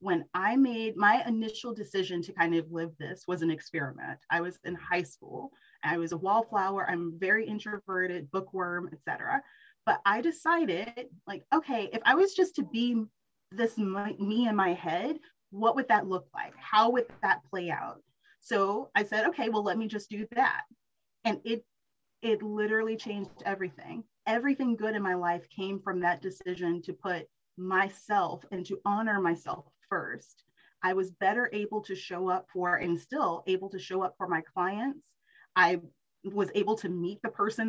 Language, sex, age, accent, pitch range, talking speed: English, female, 30-49, American, 180-235 Hz, 180 wpm